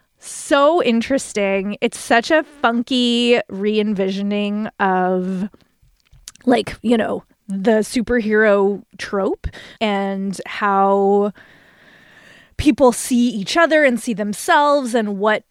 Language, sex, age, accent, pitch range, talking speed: English, female, 20-39, American, 195-250 Hz, 95 wpm